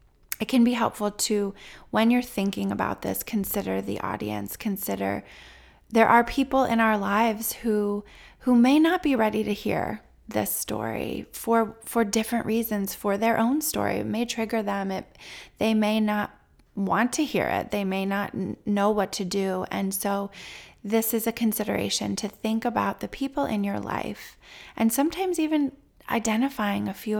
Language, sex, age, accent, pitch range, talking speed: English, female, 20-39, American, 195-230 Hz, 170 wpm